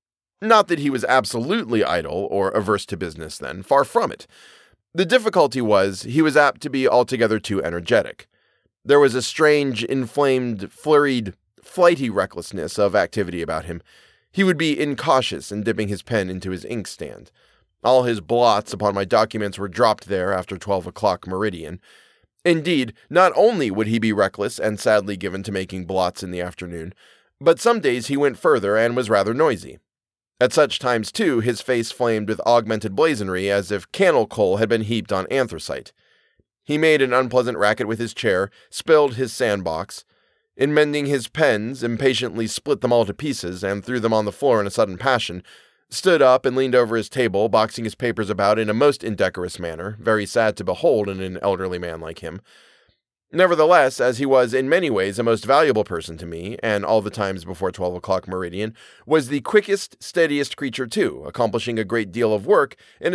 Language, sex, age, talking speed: English, male, 30-49, 185 wpm